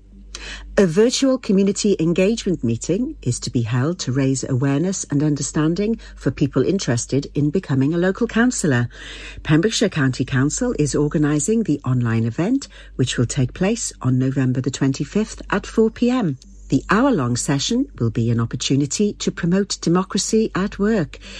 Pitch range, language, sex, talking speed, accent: 130-190 Hz, English, female, 145 wpm, British